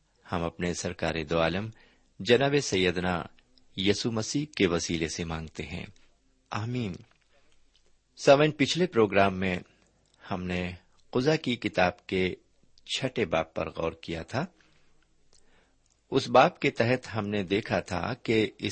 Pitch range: 90-125 Hz